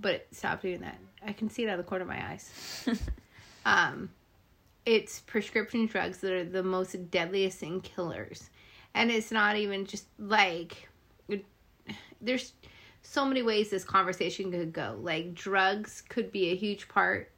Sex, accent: female, American